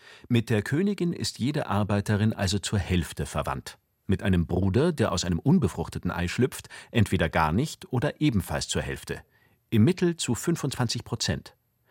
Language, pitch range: German, 90-130 Hz